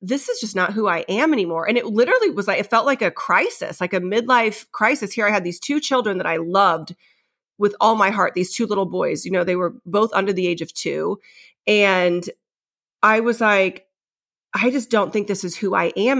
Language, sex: English, female